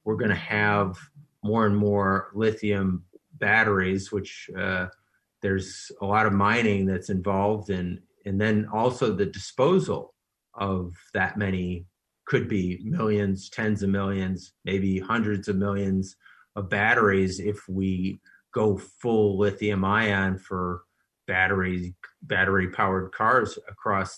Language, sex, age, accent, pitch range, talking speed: English, male, 30-49, American, 95-110 Hz, 125 wpm